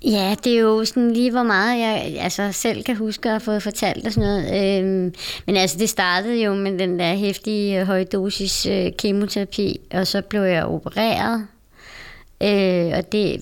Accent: native